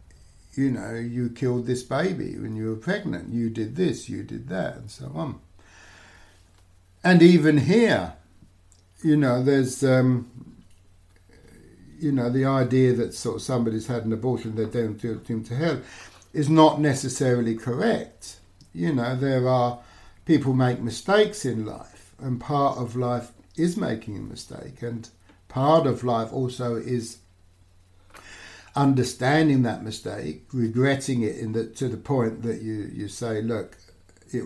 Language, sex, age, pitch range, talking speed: English, male, 60-79, 100-130 Hz, 145 wpm